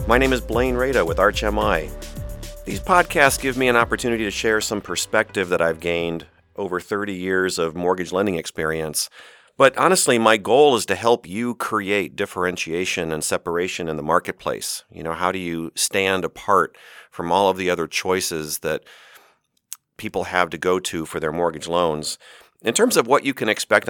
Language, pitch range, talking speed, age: English, 85-110 Hz, 180 wpm, 40-59